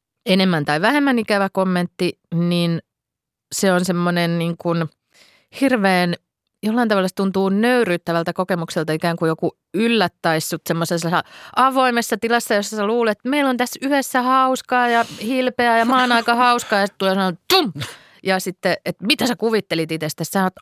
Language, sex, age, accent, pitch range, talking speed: Finnish, female, 30-49, native, 165-215 Hz, 145 wpm